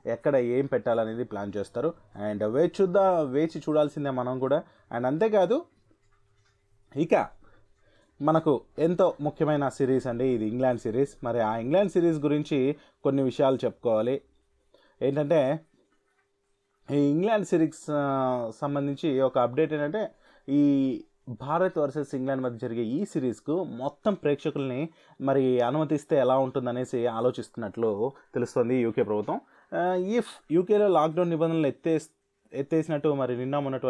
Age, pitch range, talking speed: 30-49, 125-160 Hz, 115 wpm